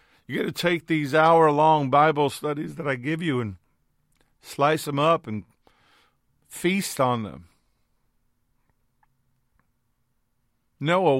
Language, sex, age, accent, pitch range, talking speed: English, male, 50-69, American, 115-145 Hz, 115 wpm